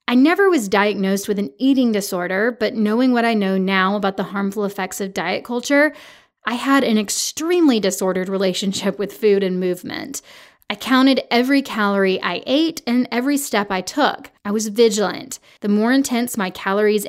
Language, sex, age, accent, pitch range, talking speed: English, female, 20-39, American, 195-260 Hz, 175 wpm